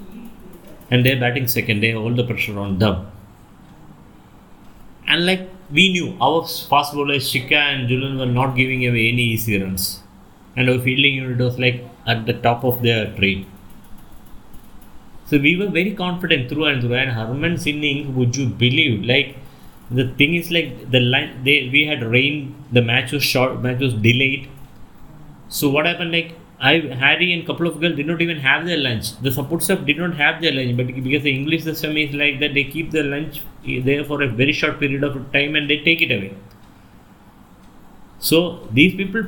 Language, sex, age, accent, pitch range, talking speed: English, male, 30-49, Indian, 125-155 Hz, 190 wpm